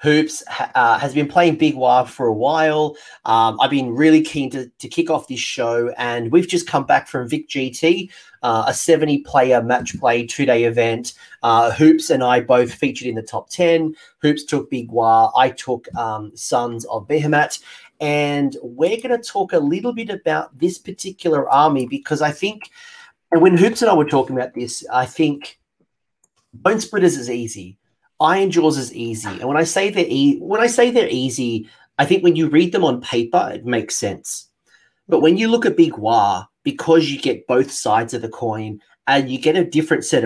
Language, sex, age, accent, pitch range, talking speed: English, male, 30-49, Australian, 120-170 Hz, 195 wpm